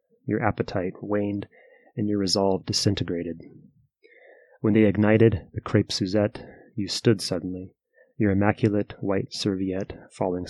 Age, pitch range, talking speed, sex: 30-49, 95-115 Hz, 120 wpm, male